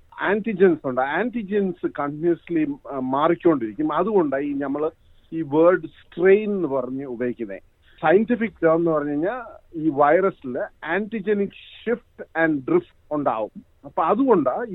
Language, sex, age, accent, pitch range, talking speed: Malayalam, male, 50-69, native, 140-195 Hz, 115 wpm